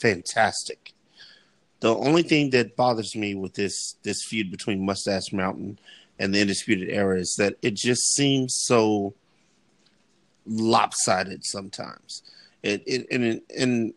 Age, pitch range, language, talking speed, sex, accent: 30-49, 100-130 Hz, English, 125 wpm, male, American